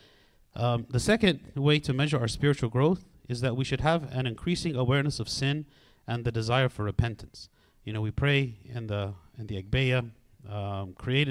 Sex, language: male, English